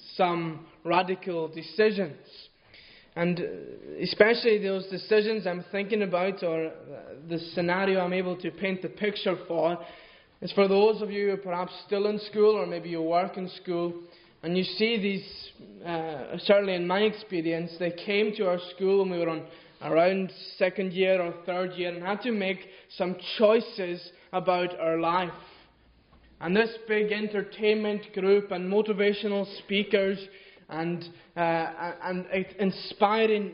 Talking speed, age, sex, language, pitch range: 145 wpm, 20-39, male, English, 175-205 Hz